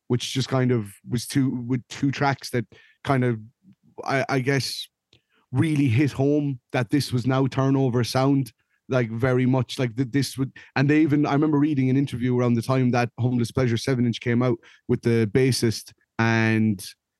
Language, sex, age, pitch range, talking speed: English, male, 30-49, 115-130 Hz, 185 wpm